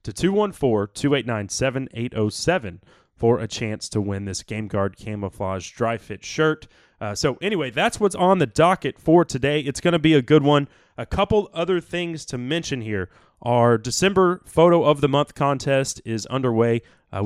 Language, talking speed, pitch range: English, 165 wpm, 110-145 Hz